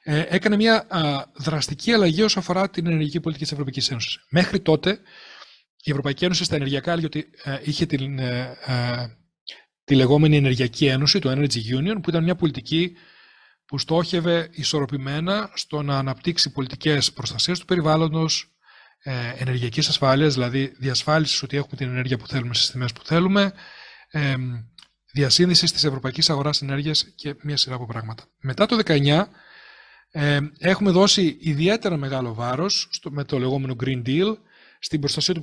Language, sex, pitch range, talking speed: Greek, male, 135-170 Hz, 135 wpm